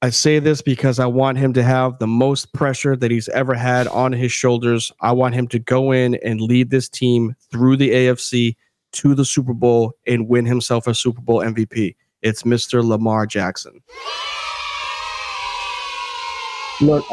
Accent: American